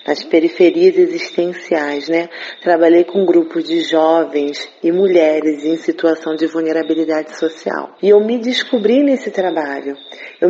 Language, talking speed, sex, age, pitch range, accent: Portuguese, 130 wpm, female, 40-59, 165-210 Hz, Brazilian